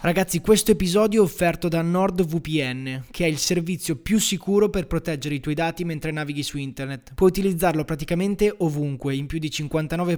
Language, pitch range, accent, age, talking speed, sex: Italian, 150-180 Hz, native, 20-39, 175 wpm, male